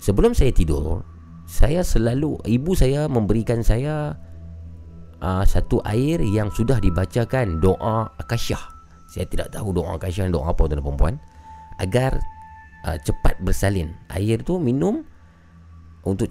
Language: Malay